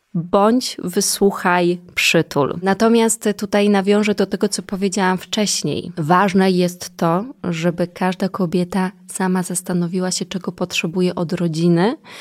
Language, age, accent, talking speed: Polish, 20-39, native, 120 wpm